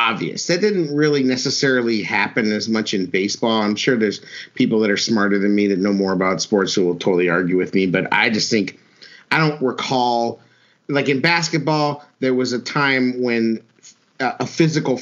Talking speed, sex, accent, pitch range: 185 wpm, male, American, 105-130 Hz